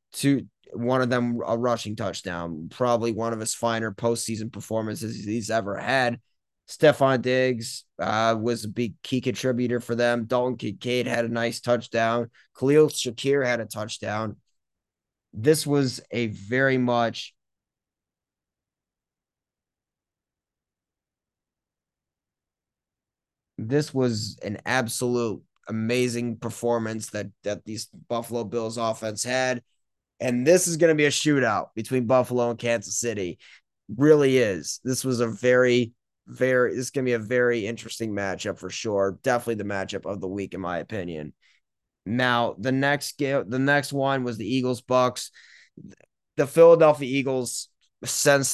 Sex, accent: male, American